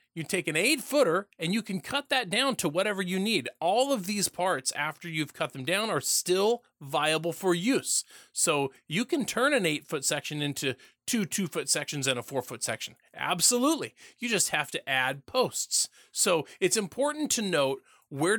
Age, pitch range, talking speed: 30-49, 145-200 Hz, 195 wpm